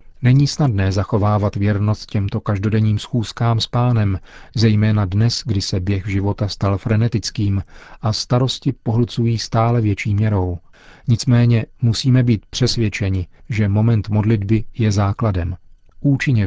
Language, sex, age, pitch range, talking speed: Czech, male, 40-59, 100-120 Hz, 120 wpm